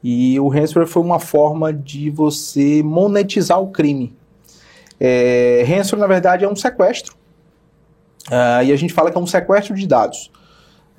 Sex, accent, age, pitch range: male, Brazilian, 30-49, 145-195 Hz